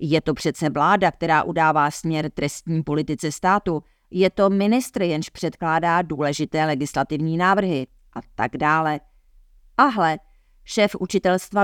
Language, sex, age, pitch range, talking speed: Czech, female, 40-59, 150-180 Hz, 130 wpm